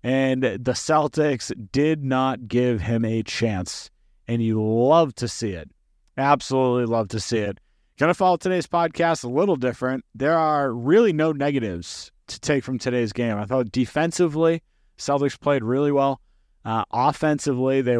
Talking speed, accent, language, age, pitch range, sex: 160 wpm, American, English, 30-49, 115-150 Hz, male